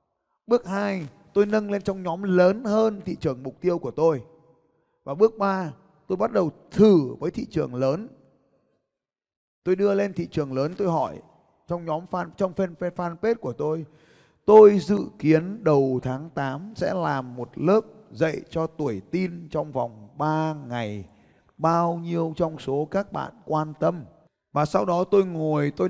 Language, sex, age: Vietnamese, male, 20-39